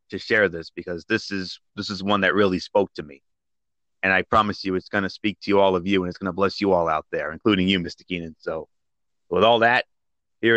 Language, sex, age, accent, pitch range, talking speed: English, male, 30-49, American, 95-125 Hz, 255 wpm